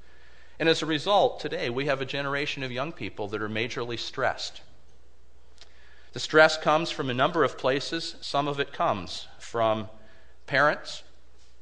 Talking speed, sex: 155 wpm, male